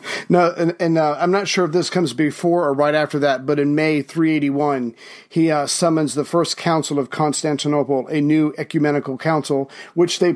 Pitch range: 145-165 Hz